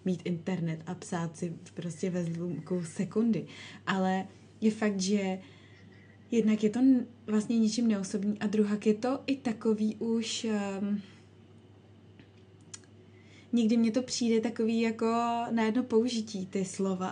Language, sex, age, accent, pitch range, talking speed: Czech, female, 20-39, native, 185-215 Hz, 135 wpm